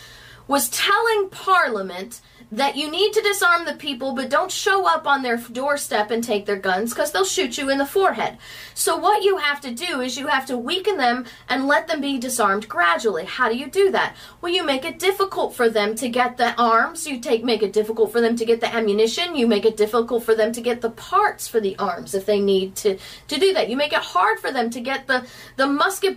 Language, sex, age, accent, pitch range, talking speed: English, female, 30-49, American, 230-345 Hz, 240 wpm